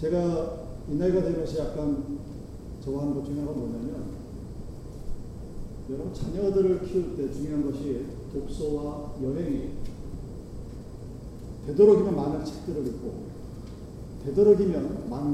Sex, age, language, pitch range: male, 40-59, Korean, 150-225 Hz